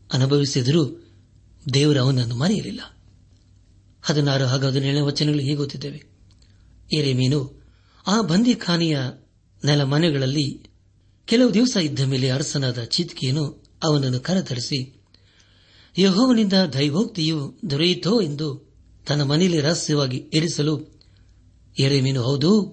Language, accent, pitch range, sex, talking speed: Kannada, native, 115-160 Hz, male, 85 wpm